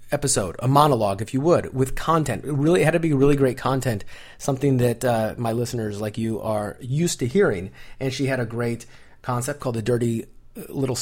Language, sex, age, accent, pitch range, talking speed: English, male, 30-49, American, 110-140 Hz, 205 wpm